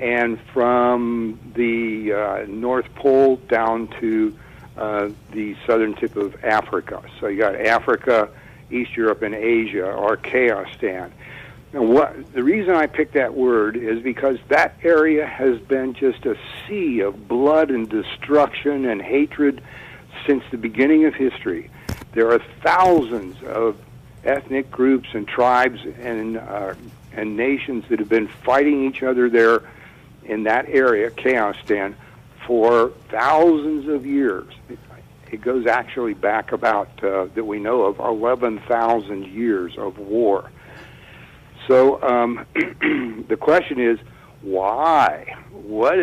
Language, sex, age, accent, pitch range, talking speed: English, male, 60-79, American, 115-140 Hz, 135 wpm